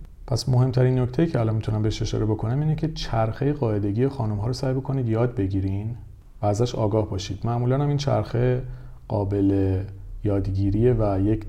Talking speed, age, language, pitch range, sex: 160 wpm, 40-59, Persian, 100-120 Hz, male